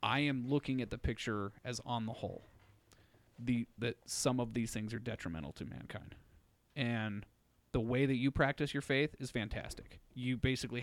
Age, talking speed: 30-49, 175 wpm